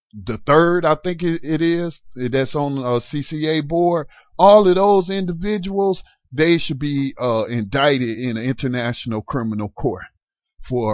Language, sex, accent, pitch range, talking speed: English, male, American, 120-160 Hz, 145 wpm